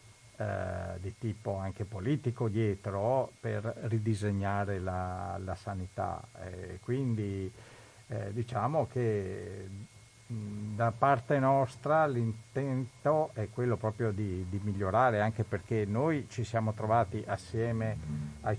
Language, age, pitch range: Italian, 50-69, 105-125 Hz